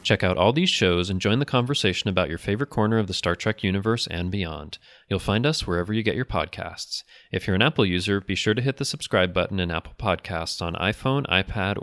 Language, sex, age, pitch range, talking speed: English, male, 30-49, 90-115 Hz, 235 wpm